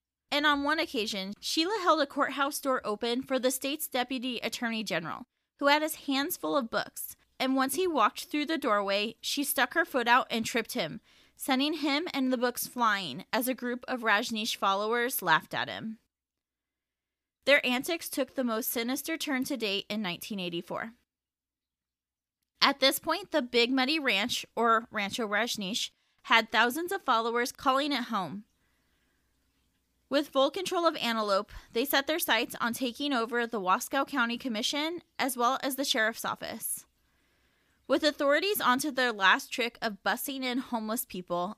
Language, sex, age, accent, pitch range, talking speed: English, female, 20-39, American, 215-275 Hz, 165 wpm